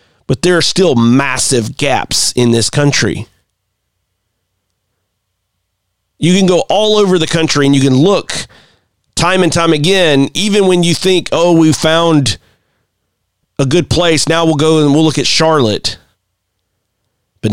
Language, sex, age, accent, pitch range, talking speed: English, male, 40-59, American, 100-155 Hz, 145 wpm